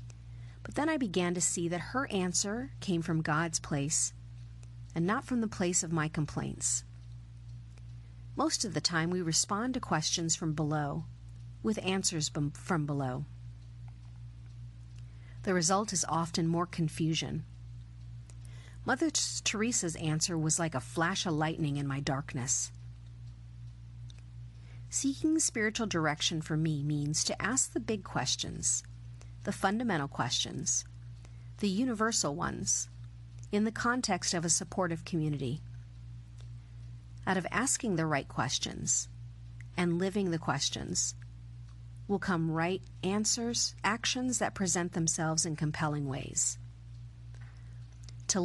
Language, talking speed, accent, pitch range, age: English, 125 wpm, American, 120-175 Hz, 40-59